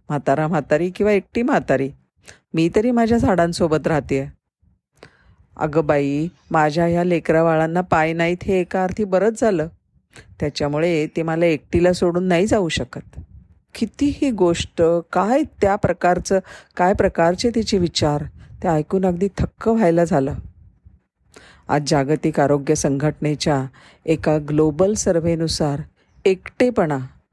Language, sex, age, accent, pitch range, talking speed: Marathi, female, 40-59, native, 145-185 Hz, 115 wpm